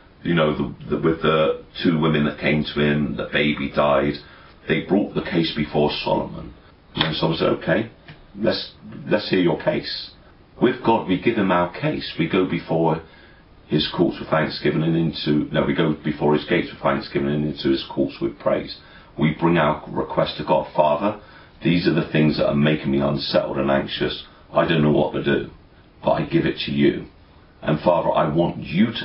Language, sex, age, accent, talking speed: English, male, 40-59, British, 200 wpm